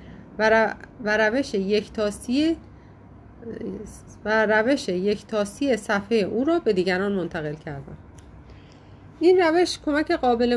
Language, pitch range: Persian, 190-270 Hz